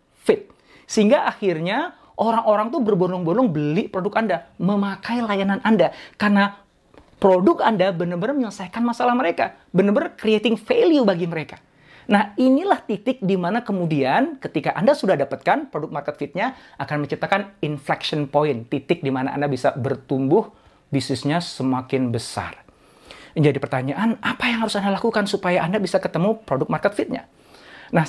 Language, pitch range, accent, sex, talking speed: Indonesian, 150-225 Hz, native, male, 140 wpm